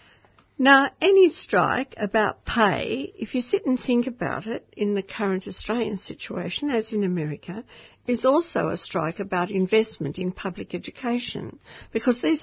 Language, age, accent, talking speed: English, 60-79, Australian, 150 wpm